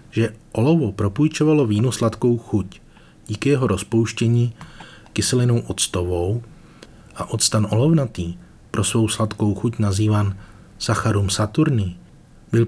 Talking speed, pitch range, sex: 105 wpm, 100-120 Hz, male